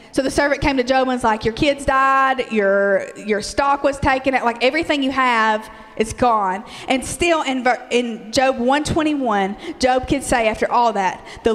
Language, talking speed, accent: English, 185 wpm, American